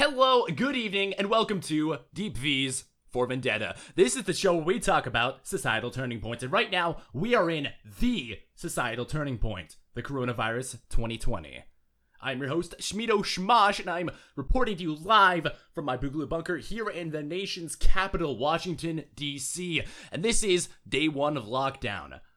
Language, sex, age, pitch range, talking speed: English, male, 20-39, 120-175 Hz, 170 wpm